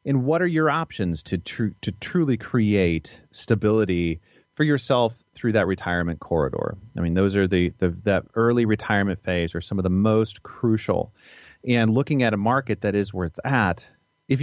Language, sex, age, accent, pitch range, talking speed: English, male, 30-49, American, 90-110 Hz, 185 wpm